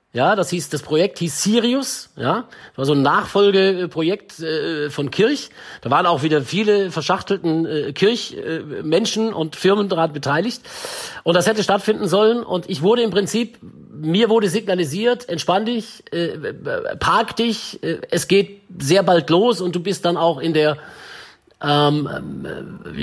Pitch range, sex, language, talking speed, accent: 145-200 Hz, male, German, 160 wpm, German